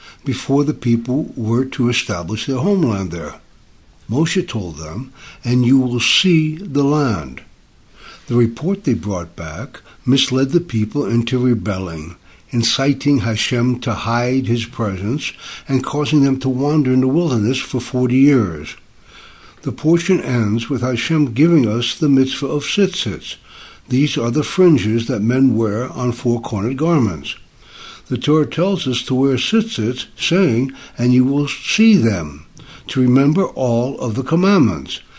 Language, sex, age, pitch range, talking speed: English, male, 60-79, 115-150 Hz, 145 wpm